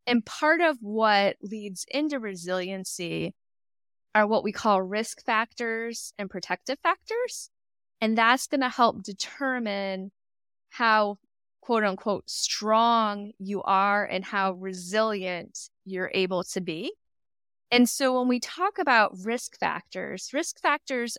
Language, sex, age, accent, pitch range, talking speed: English, female, 20-39, American, 195-250 Hz, 125 wpm